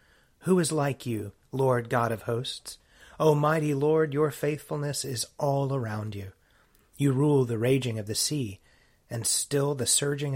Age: 30-49